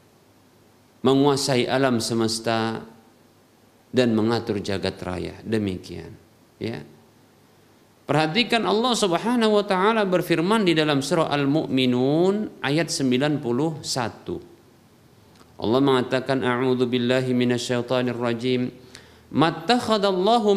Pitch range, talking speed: 120-170 Hz, 80 wpm